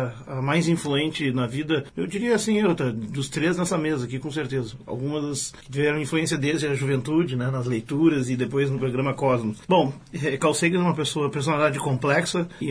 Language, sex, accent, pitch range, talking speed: Portuguese, male, Brazilian, 135-175 Hz, 185 wpm